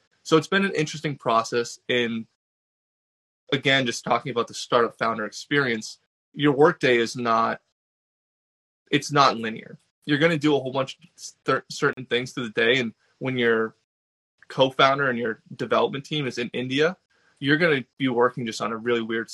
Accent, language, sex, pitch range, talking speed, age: American, English, male, 115-140 Hz, 175 wpm, 20-39